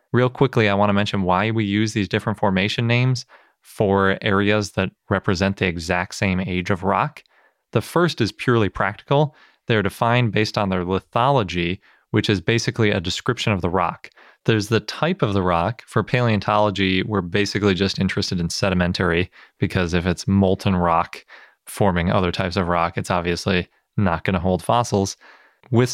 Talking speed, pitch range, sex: 165 wpm, 95-115 Hz, male